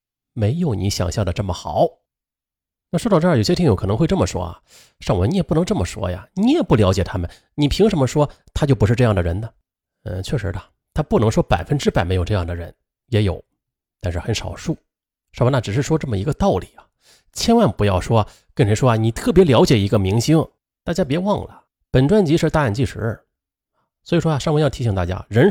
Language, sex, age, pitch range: Chinese, male, 30-49, 95-150 Hz